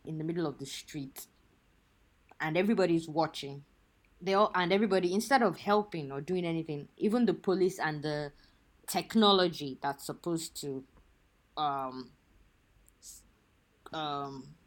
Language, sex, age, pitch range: English, female, 20-39, 140-180 Hz